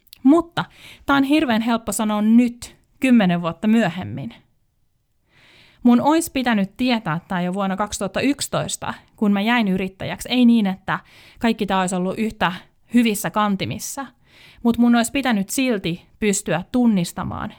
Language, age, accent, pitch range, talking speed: Finnish, 30-49, native, 180-240 Hz, 130 wpm